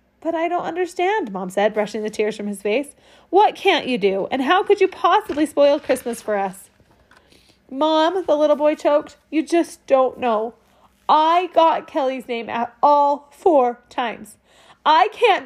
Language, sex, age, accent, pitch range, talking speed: English, female, 30-49, American, 275-360 Hz, 170 wpm